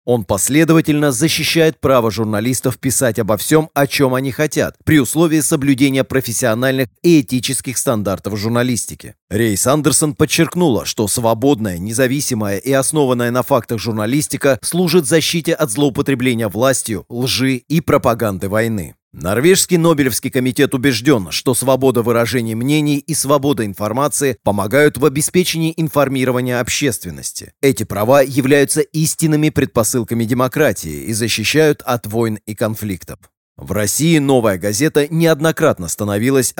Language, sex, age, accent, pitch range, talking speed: Russian, male, 30-49, native, 115-145 Hz, 120 wpm